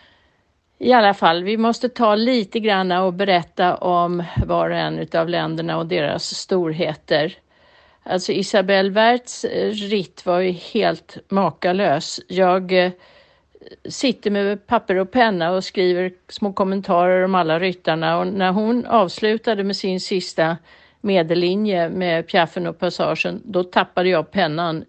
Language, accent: Swedish, native